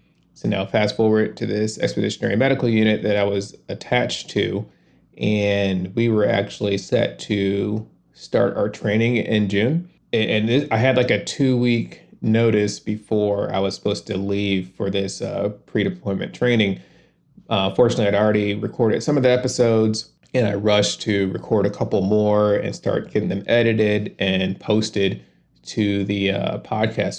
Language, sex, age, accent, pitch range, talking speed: English, male, 30-49, American, 100-110 Hz, 160 wpm